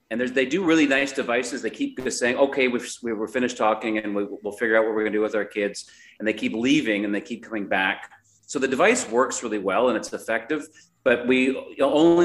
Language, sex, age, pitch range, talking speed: English, male, 40-59, 110-130 Hz, 240 wpm